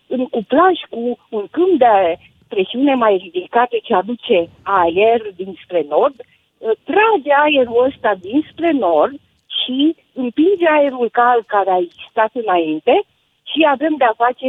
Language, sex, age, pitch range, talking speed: Romanian, female, 50-69, 210-305 Hz, 135 wpm